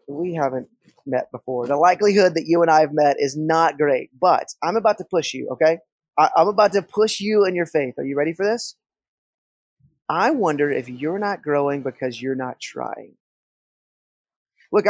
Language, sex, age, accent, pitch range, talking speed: English, male, 20-39, American, 150-200 Hz, 185 wpm